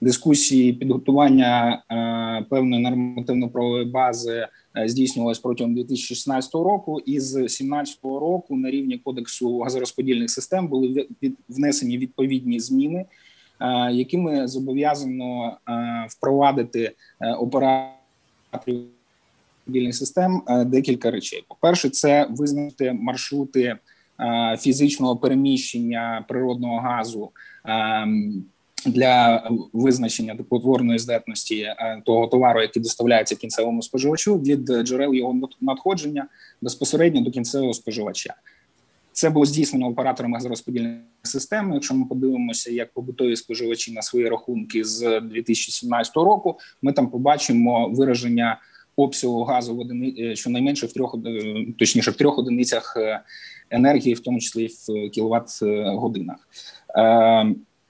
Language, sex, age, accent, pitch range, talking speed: Ukrainian, male, 20-39, native, 115-135 Hz, 110 wpm